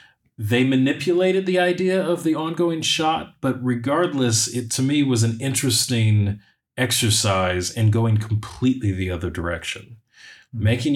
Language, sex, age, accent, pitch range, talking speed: English, male, 30-49, American, 90-120 Hz, 130 wpm